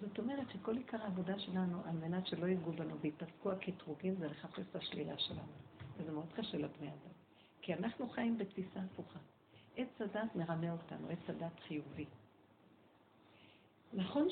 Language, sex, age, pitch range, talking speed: Hebrew, female, 50-69, 175-240 Hz, 150 wpm